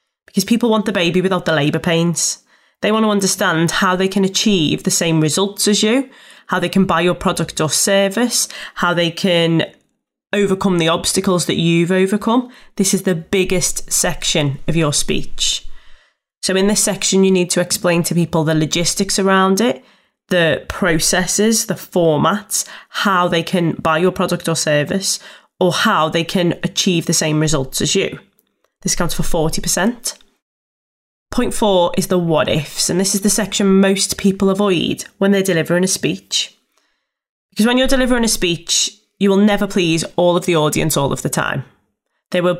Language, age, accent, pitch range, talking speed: English, 20-39, British, 170-200 Hz, 180 wpm